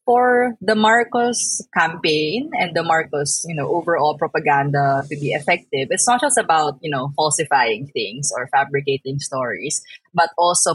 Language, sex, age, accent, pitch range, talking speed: Filipino, female, 20-39, native, 145-200 Hz, 150 wpm